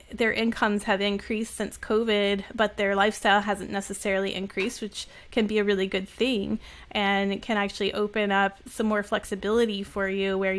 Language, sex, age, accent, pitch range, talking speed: English, female, 30-49, American, 200-220 Hz, 175 wpm